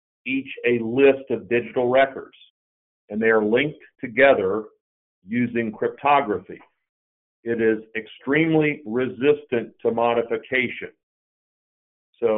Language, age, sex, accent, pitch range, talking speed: English, 50-69, male, American, 110-140 Hz, 95 wpm